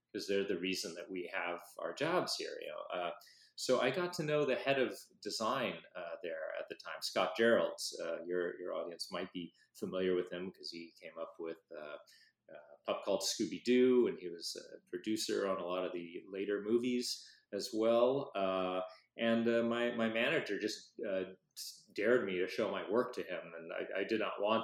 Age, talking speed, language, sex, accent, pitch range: 30-49, 210 wpm, English, male, American, 100-155 Hz